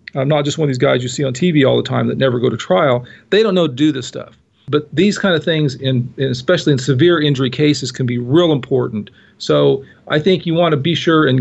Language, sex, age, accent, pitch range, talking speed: English, male, 40-59, American, 135-175 Hz, 260 wpm